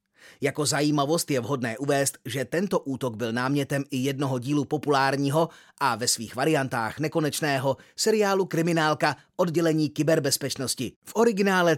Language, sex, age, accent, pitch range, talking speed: Czech, male, 30-49, native, 135-175 Hz, 125 wpm